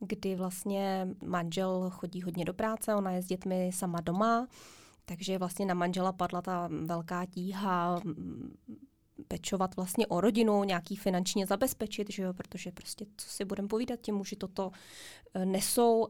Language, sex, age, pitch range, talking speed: Czech, female, 20-39, 185-220 Hz, 150 wpm